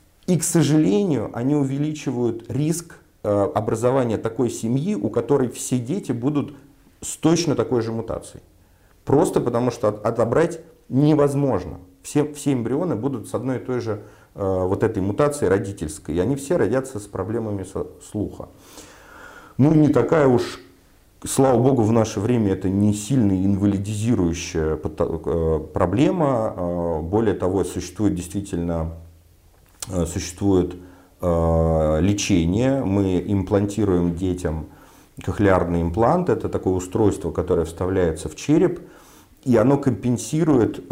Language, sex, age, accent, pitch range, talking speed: Russian, male, 40-59, native, 90-130 Hz, 115 wpm